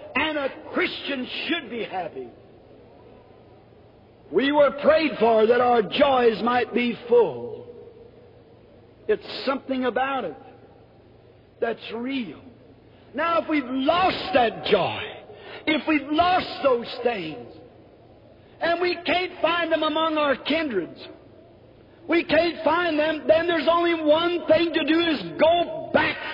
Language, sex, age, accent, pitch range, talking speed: English, male, 50-69, American, 275-340 Hz, 125 wpm